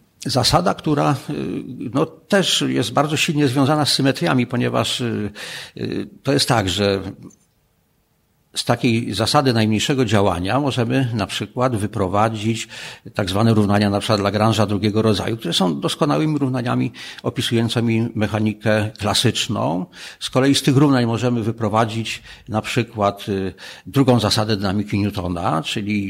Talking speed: 120 wpm